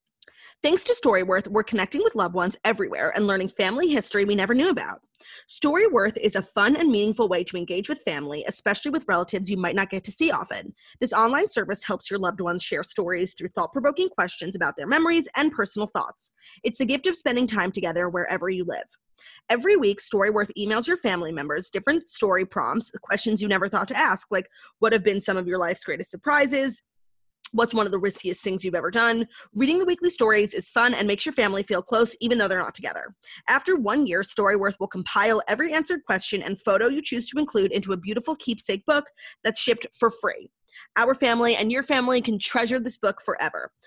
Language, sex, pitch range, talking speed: English, female, 195-275 Hz, 210 wpm